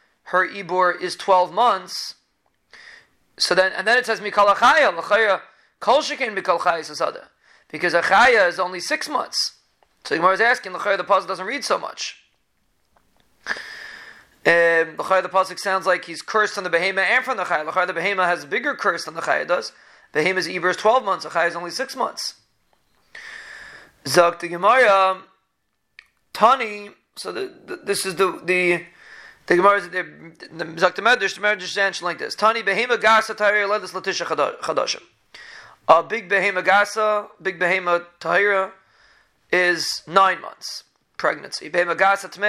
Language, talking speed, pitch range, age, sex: English, 150 wpm, 175-205 Hz, 30-49, male